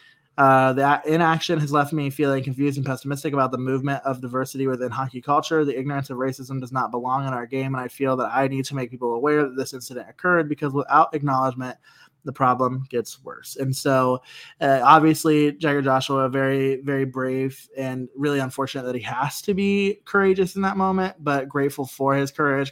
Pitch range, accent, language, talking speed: 130-145 Hz, American, English, 200 wpm